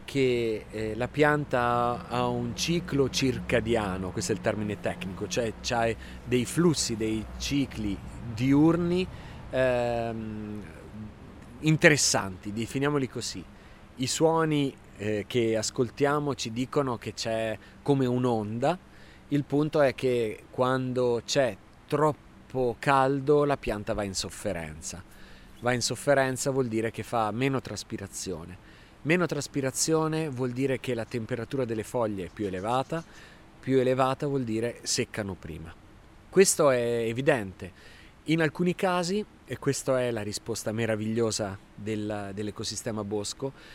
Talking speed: 120 wpm